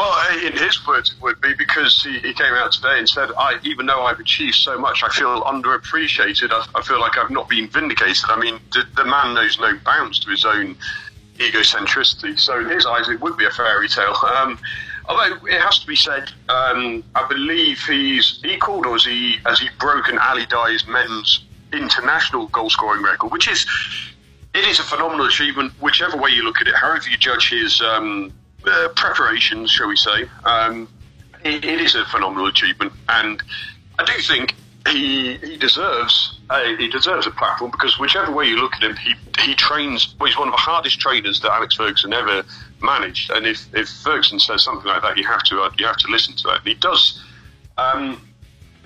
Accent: British